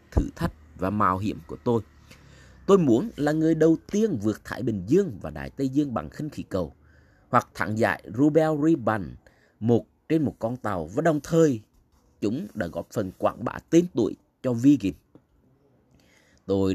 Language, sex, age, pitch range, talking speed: Vietnamese, male, 20-39, 100-150 Hz, 175 wpm